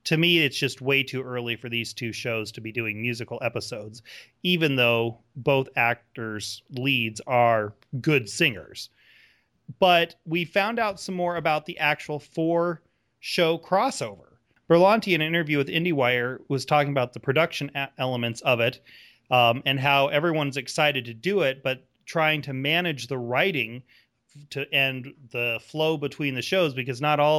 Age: 30-49